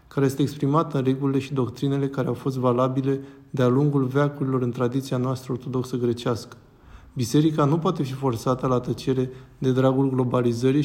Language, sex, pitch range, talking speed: Romanian, male, 125-145 Hz, 160 wpm